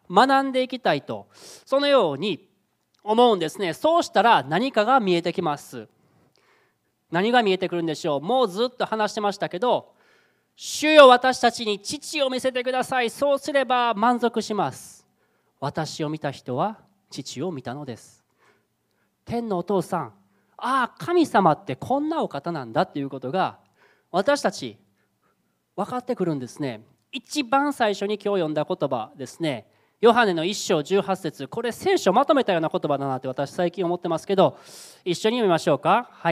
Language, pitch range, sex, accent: Japanese, 155-240 Hz, male, native